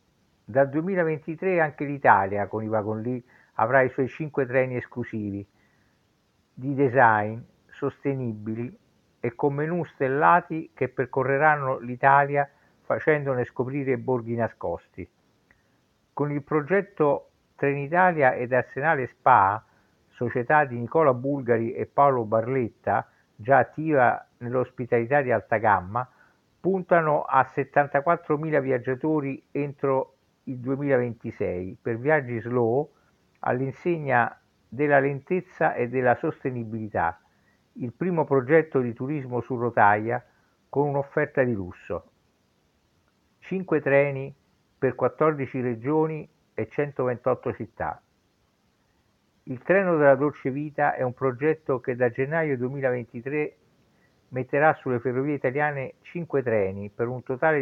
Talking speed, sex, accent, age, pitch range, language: 110 wpm, male, native, 60-79, 120-150 Hz, Italian